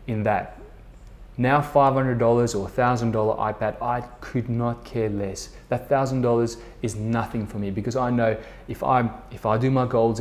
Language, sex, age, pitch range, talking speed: English, male, 20-39, 105-125 Hz, 165 wpm